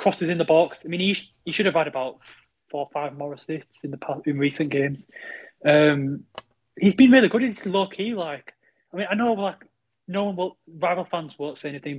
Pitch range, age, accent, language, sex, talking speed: 150-185 Hz, 20-39, British, English, male, 225 wpm